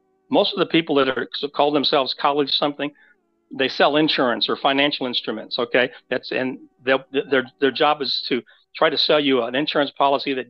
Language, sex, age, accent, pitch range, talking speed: English, male, 50-69, American, 130-150 Hz, 185 wpm